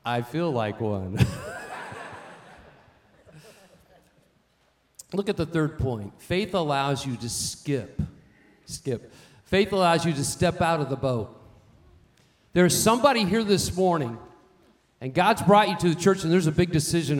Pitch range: 125-170 Hz